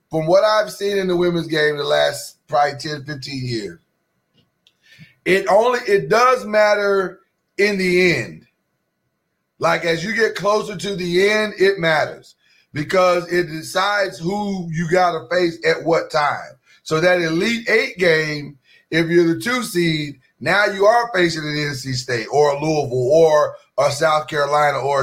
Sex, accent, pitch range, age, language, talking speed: male, American, 155-190 Hz, 30-49, English, 165 wpm